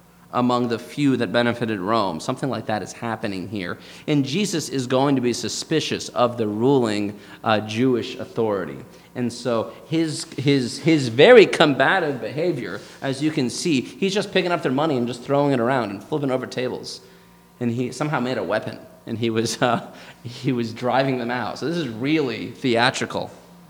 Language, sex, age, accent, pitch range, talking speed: English, male, 30-49, American, 110-140 Hz, 180 wpm